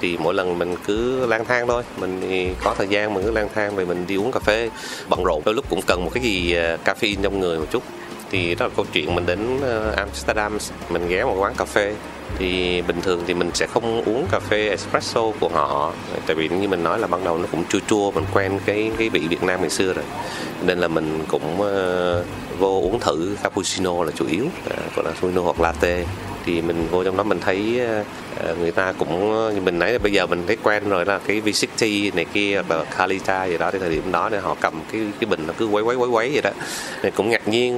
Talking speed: 240 wpm